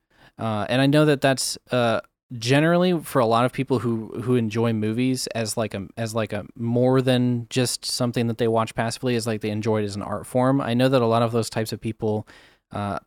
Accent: American